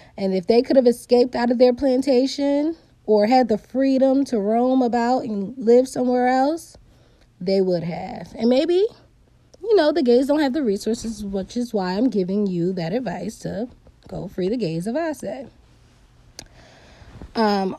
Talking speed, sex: 165 wpm, female